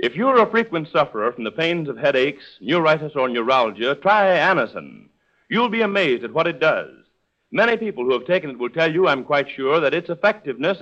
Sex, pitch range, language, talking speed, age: male, 165-205 Hz, English, 205 wpm, 60-79